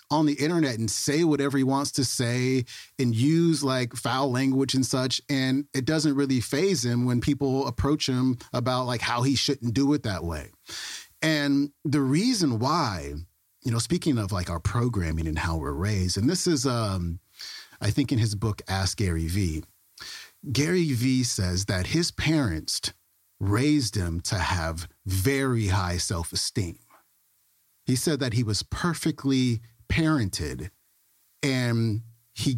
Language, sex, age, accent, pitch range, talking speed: English, male, 40-59, American, 110-145 Hz, 155 wpm